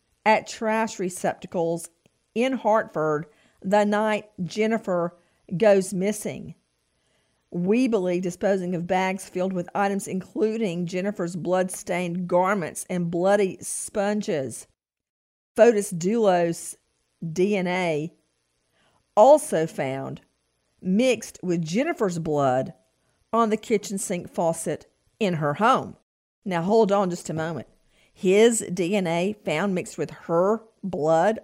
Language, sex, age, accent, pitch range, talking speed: English, female, 50-69, American, 175-215 Hz, 105 wpm